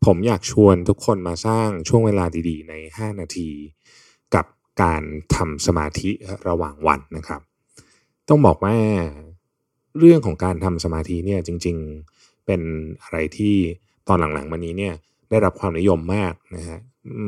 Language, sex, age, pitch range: Thai, male, 20-39, 85-110 Hz